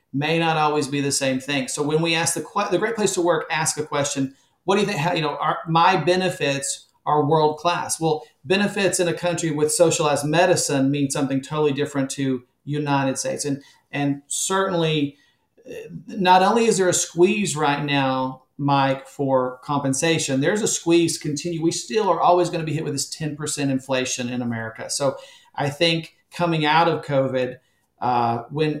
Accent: American